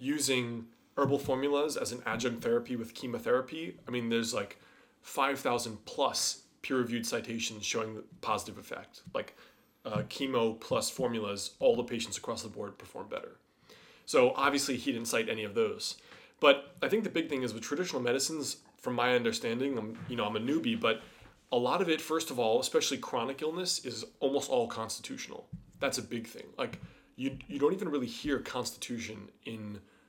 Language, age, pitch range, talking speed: English, 20-39, 115-140 Hz, 175 wpm